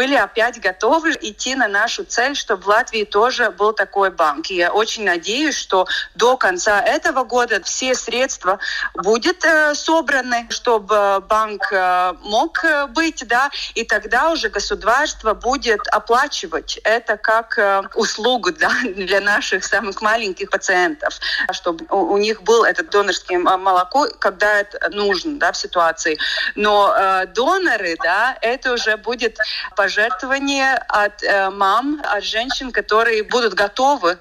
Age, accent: 30-49, native